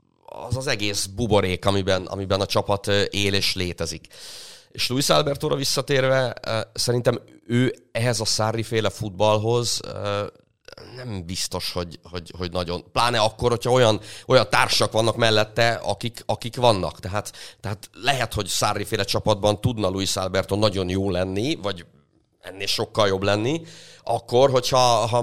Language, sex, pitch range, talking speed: Hungarian, male, 100-120 Hz, 140 wpm